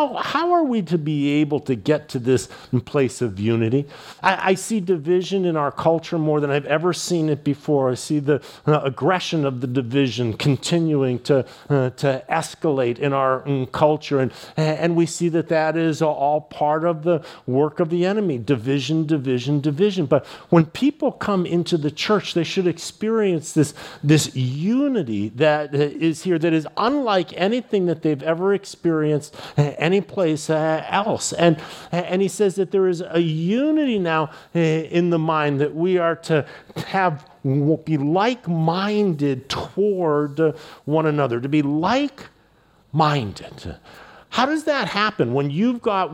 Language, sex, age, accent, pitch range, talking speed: English, male, 50-69, American, 150-185 Hz, 165 wpm